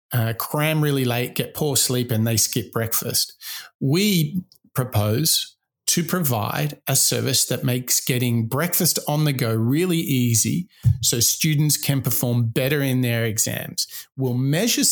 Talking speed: 145 wpm